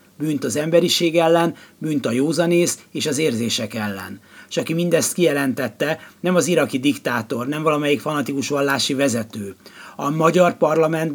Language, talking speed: Hungarian, 140 wpm